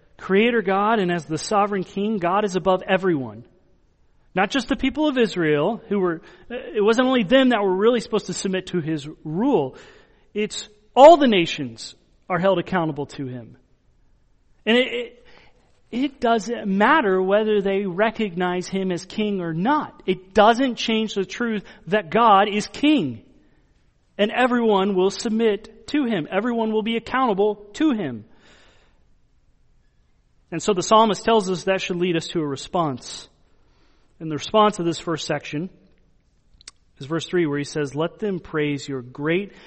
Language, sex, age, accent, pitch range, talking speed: English, male, 40-59, American, 155-220 Hz, 160 wpm